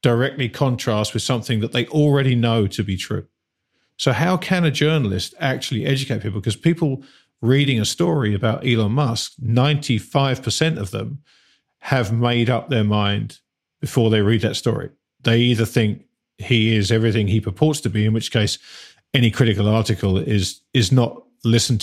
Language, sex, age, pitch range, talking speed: English, male, 50-69, 105-135 Hz, 165 wpm